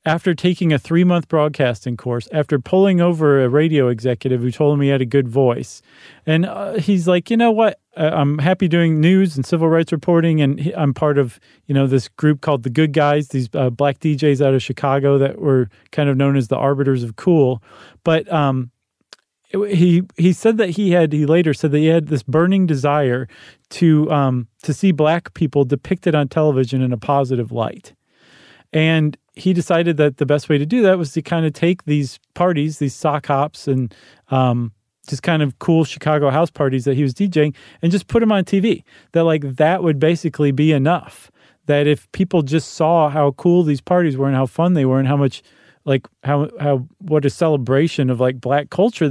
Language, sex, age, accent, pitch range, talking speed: English, male, 40-59, American, 135-165 Hz, 205 wpm